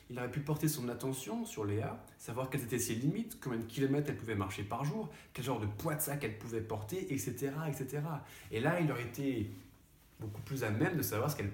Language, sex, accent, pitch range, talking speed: French, male, French, 110-150 Hz, 235 wpm